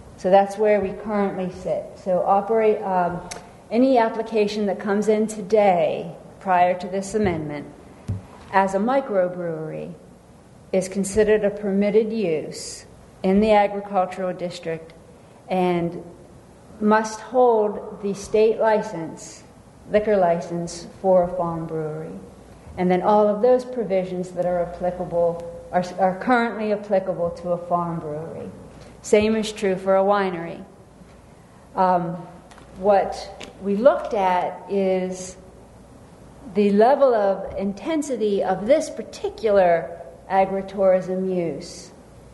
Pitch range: 180-215 Hz